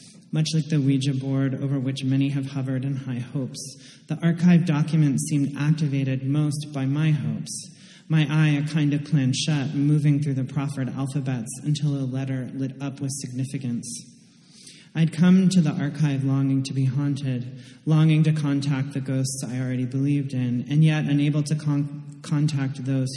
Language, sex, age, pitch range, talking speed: English, male, 30-49, 135-155 Hz, 165 wpm